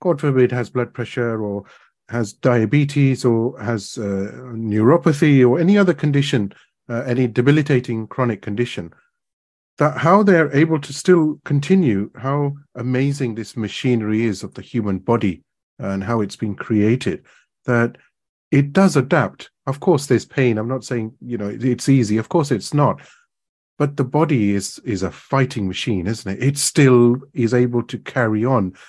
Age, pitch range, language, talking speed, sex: 30-49, 115-145 Hz, English, 160 wpm, male